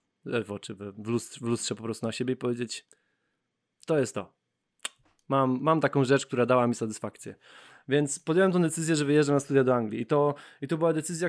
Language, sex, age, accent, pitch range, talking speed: Polish, male, 20-39, native, 120-165 Hz, 205 wpm